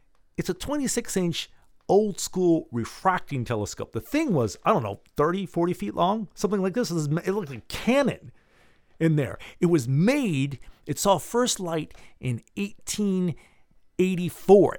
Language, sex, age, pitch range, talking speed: English, male, 40-59, 115-180 Hz, 140 wpm